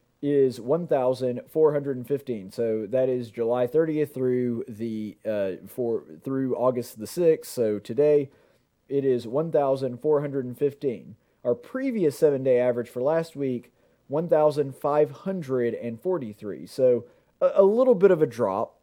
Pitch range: 130-170 Hz